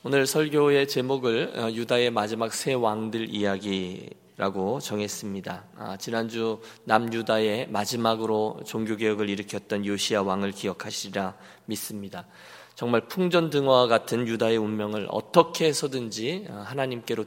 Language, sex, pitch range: Korean, male, 105-130 Hz